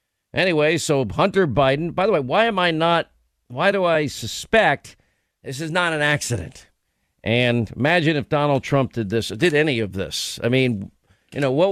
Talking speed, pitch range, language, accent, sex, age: 185 wpm, 130-165 Hz, English, American, male, 50-69